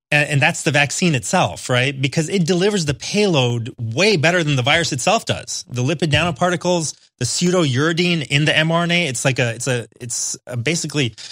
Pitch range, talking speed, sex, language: 125-170 Hz, 180 wpm, male, English